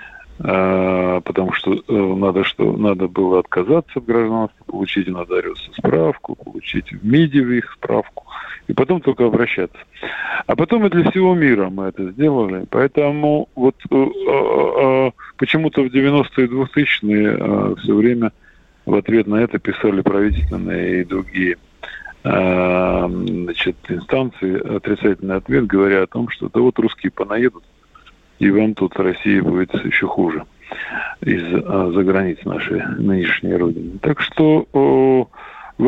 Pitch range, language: 95-130 Hz, Russian